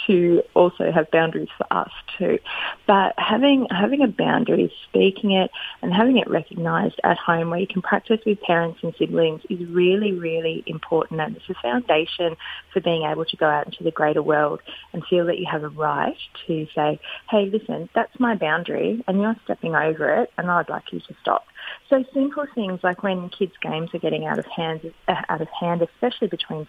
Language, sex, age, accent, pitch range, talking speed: English, female, 30-49, Australian, 165-210 Hz, 200 wpm